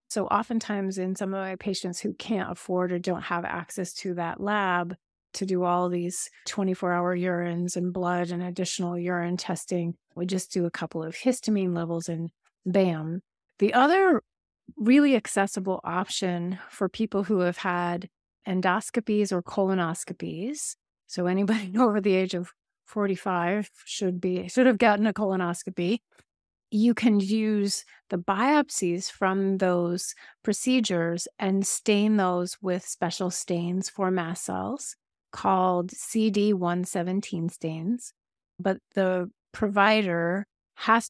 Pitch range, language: 175-205 Hz, English